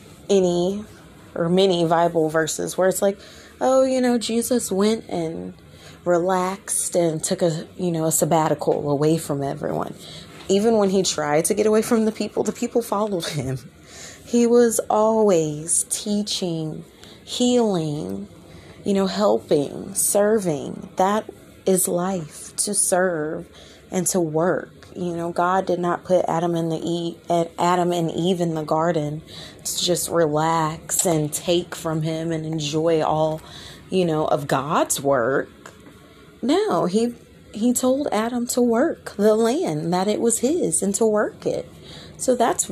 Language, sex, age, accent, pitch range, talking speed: English, female, 20-39, American, 165-205 Hz, 150 wpm